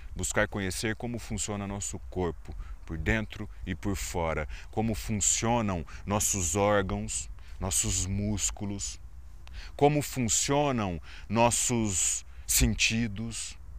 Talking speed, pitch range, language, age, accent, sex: 90 wpm, 85-130 Hz, Portuguese, 30-49, Brazilian, male